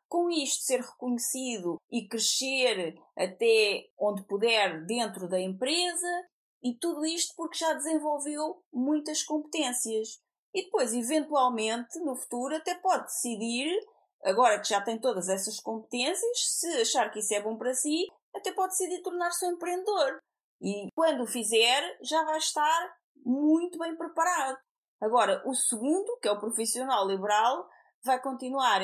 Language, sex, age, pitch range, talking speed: Portuguese, female, 20-39, 220-320 Hz, 145 wpm